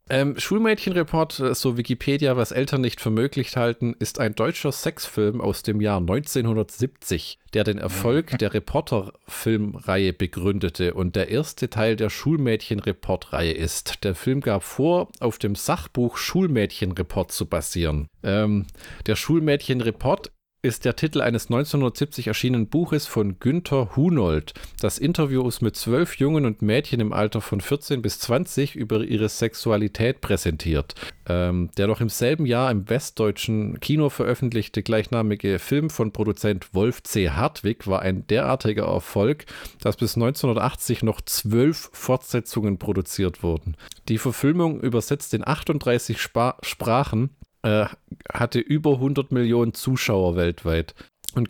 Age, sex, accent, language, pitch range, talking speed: 40-59, male, German, German, 100-130 Hz, 130 wpm